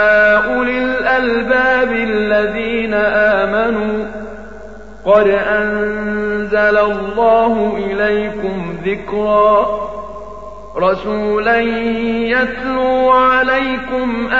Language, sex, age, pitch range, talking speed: Arabic, male, 50-69, 210-235 Hz, 55 wpm